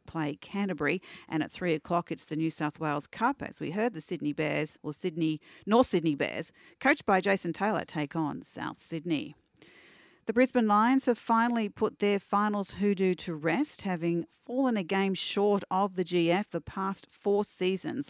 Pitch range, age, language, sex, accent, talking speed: 160-195 Hz, 40-59, English, female, Australian, 180 wpm